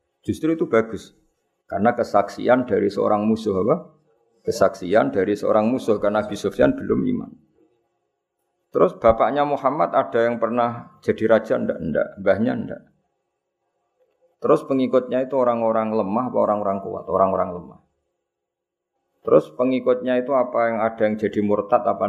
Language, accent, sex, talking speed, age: Indonesian, native, male, 130 wpm, 50-69